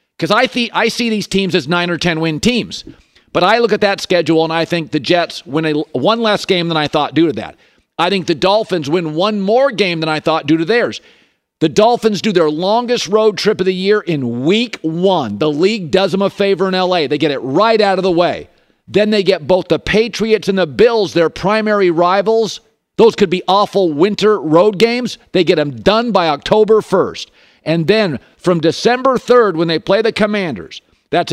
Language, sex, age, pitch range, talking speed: English, male, 50-69, 170-210 Hz, 220 wpm